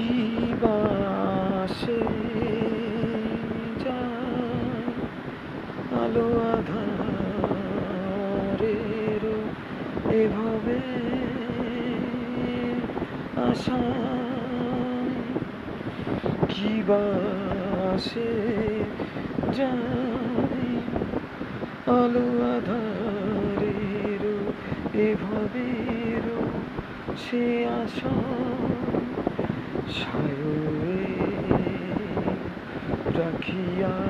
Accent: native